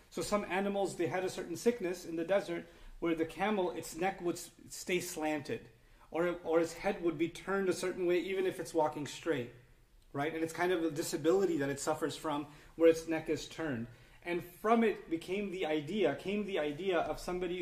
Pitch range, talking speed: 160-190 Hz, 210 wpm